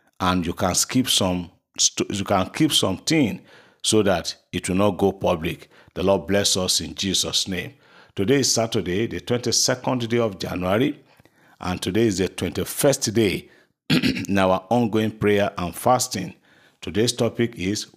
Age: 50-69